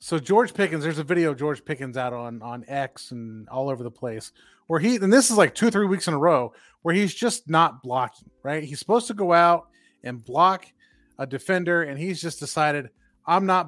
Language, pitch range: English, 135-185 Hz